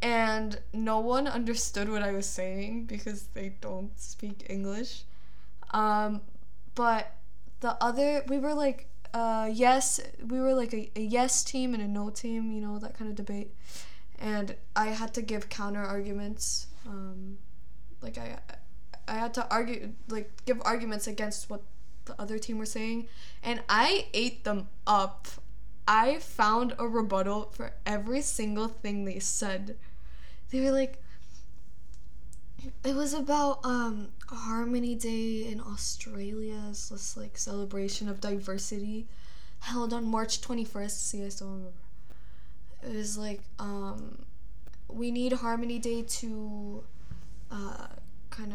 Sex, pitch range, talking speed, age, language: female, 200-235 Hz, 140 wpm, 10-29, English